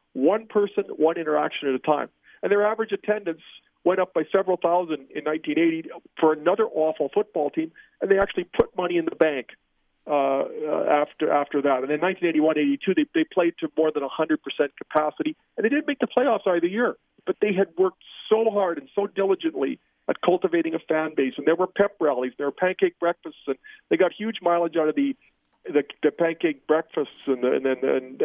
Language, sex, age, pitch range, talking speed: English, male, 50-69, 155-200 Hz, 200 wpm